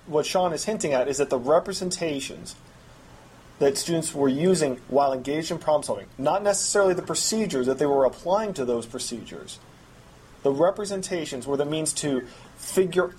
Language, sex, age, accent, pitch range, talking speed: English, male, 30-49, American, 135-180 Hz, 165 wpm